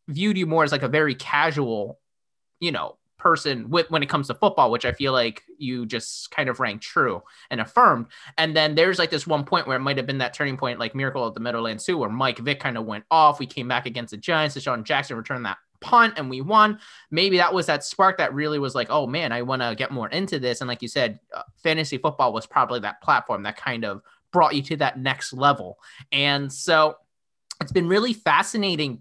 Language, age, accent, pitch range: English, 20-39, American, 125-165 Hz